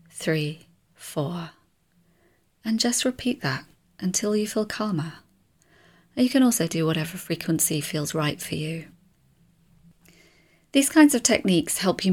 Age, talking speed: 30-49, 130 wpm